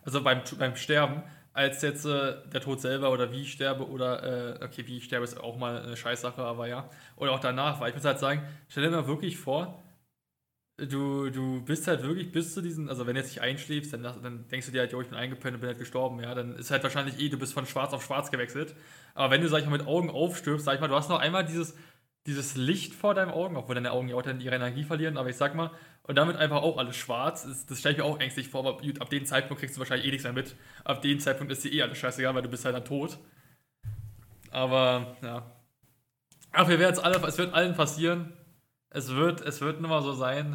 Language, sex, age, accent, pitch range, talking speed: German, male, 20-39, German, 130-155 Hz, 255 wpm